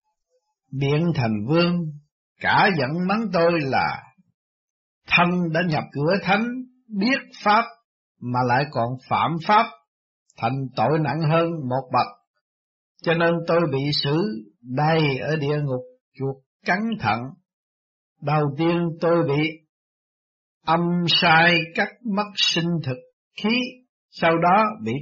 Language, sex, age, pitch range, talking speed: Vietnamese, male, 60-79, 130-185 Hz, 125 wpm